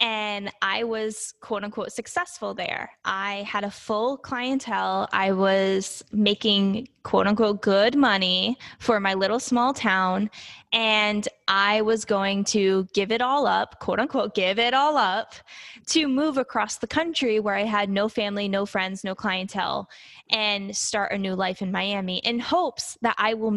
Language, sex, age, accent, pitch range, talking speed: English, female, 20-39, American, 200-250 Hz, 165 wpm